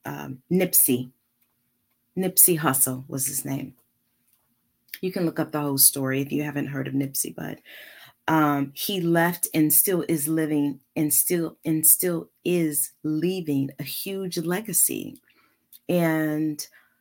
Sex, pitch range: female, 140-175 Hz